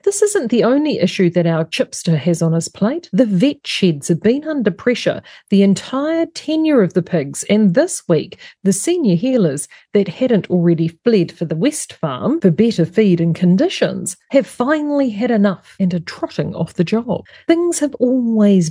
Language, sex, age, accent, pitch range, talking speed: English, female, 40-59, Australian, 180-265 Hz, 185 wpm